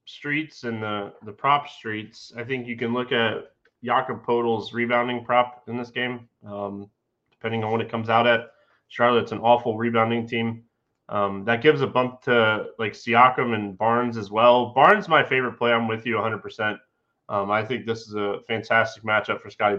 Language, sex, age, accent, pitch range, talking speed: English, male, 20-39, American, 115-145 Hz, 190 wpm